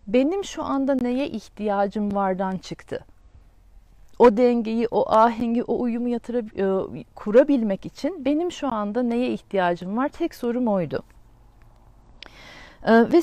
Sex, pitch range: female, 190-255 Hz